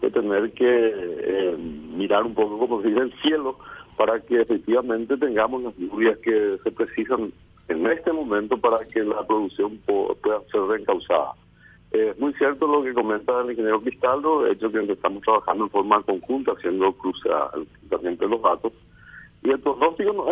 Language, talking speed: Spanish, 165 wpm